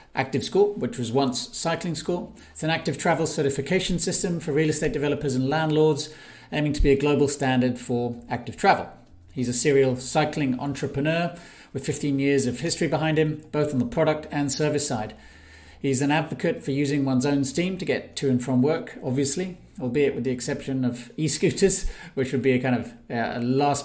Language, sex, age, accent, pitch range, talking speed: English, male, 40-59, British, 125-155 Hz, 190 wpm